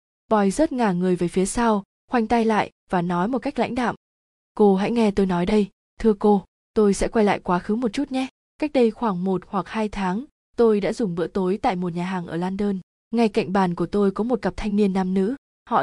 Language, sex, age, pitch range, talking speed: Vietnamese, female, 20-39, 190-225 Hz, 245 wpm